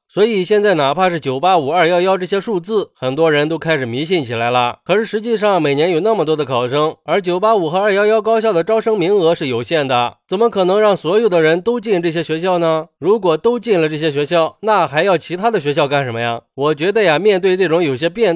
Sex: male